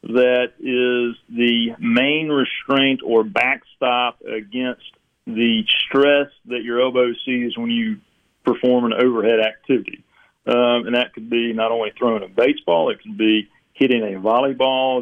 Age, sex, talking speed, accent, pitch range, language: 40-59, male, 145 wpm, American, 115-140 Hz, English